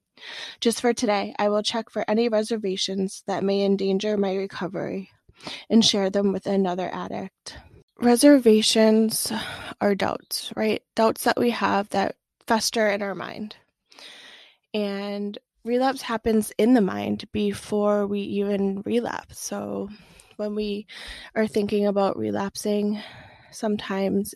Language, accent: English, American